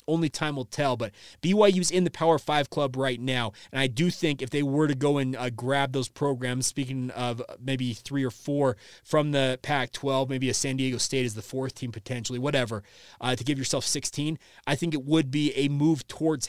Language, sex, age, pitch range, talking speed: English, male, 30-49, 125-150 Hz, 220 wpm